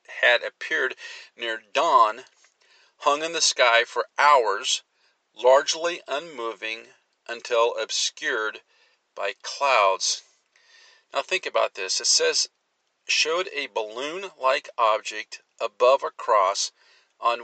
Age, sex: 50-69, male